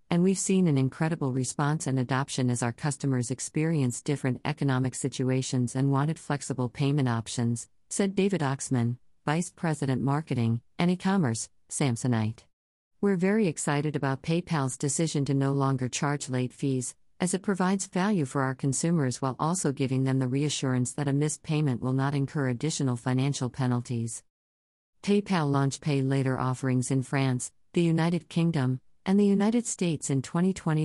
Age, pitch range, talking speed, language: 50-69, 130-155 Hz, 160 wpm, English